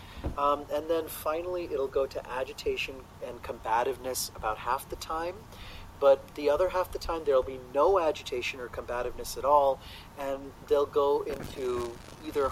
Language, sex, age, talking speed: English, male, 40-59, 160 wpm